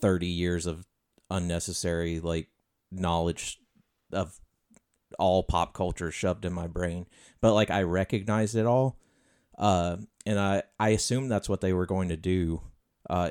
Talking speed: 150 wpm